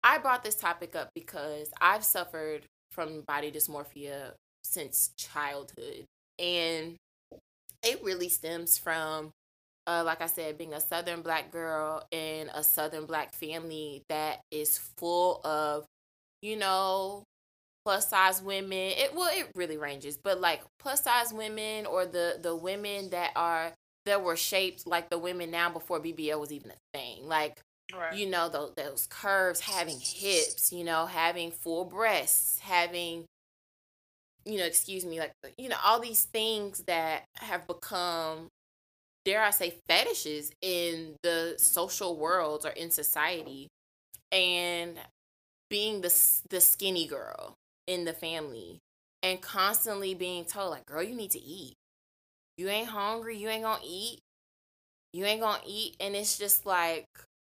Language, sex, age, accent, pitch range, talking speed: English, female, 20-39, American, 160-195 Hz, 145 wpm